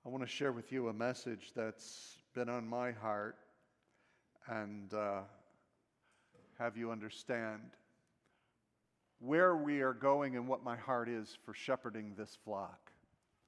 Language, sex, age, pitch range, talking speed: English, male, 50-69, 110-130 Hz, 140 wpm